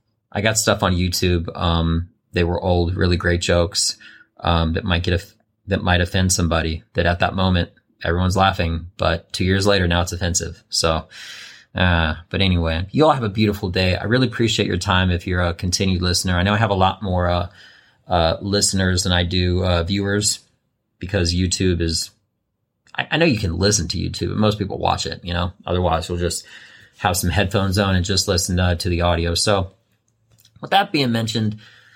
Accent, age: American, 30-49